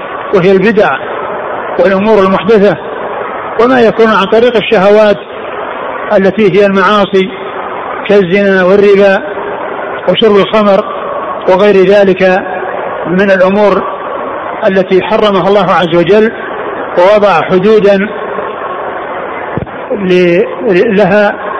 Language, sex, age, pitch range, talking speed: Arabic, male, 50-69, 195-215 Hz, 80 wpm